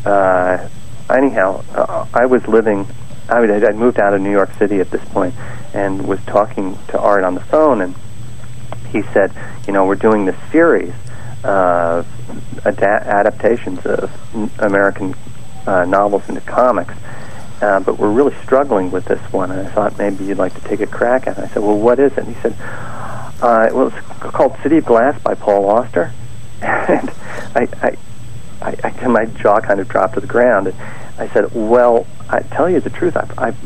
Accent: American